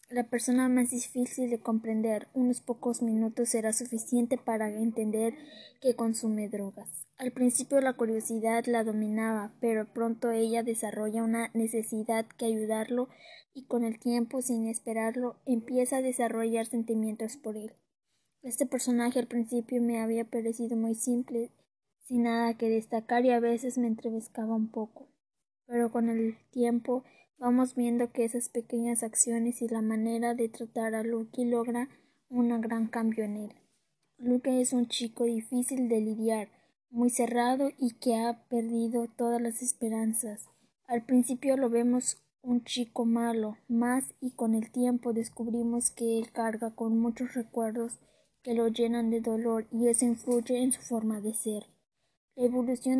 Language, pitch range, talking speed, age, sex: Spanish, 225-245 Hz, 155 wpm, 20-39, female